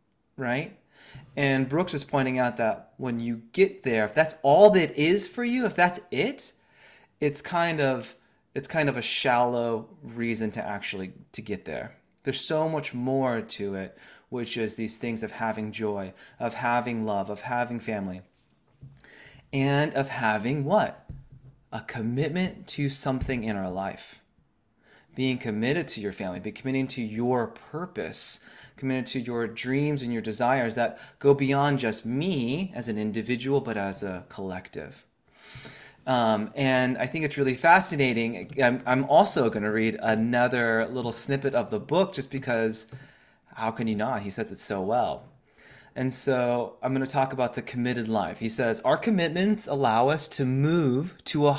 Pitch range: 115-140 Hz